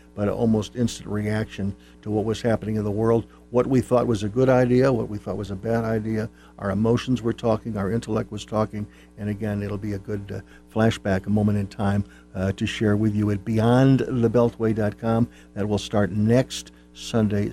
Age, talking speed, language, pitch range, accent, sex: 60-79, 200 wpm, English, 105-135 Hz, American, male